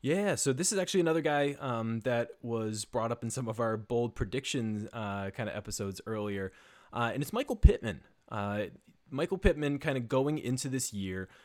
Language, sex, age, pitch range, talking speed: English, male, 20-39, 110-140 Hz, 190 wpm